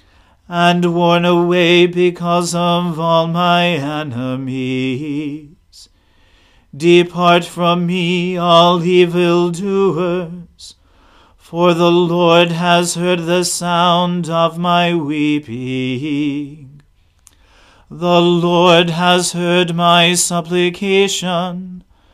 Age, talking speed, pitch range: 40-59, 80 wpm, 150-180 Hz